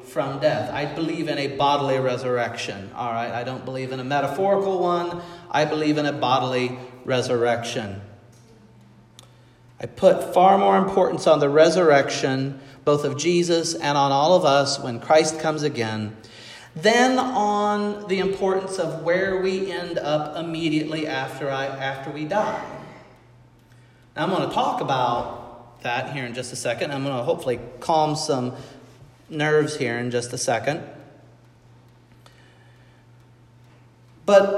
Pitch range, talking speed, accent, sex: 125-165 Hz, 145 wpm, American, male